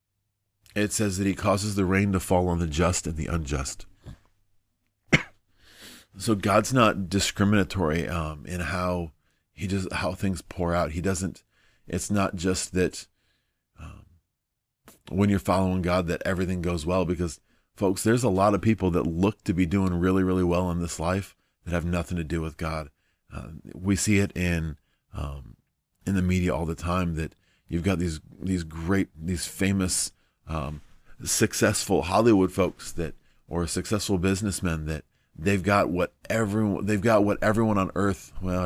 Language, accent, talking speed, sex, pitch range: English, American, 170 wpm, male, 85-100 Hz